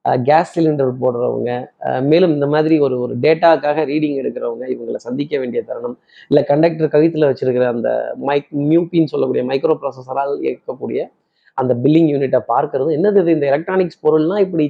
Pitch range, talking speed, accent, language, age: 140-170 Hz, 145 wpm, native, Tamil, 30-49